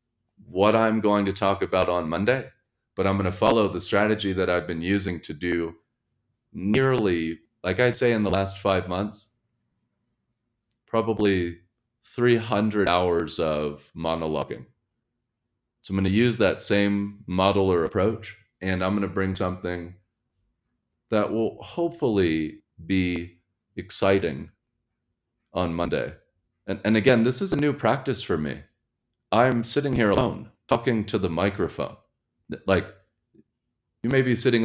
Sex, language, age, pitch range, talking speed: male, English, 30-49, 90-115 Hz, 140 wpm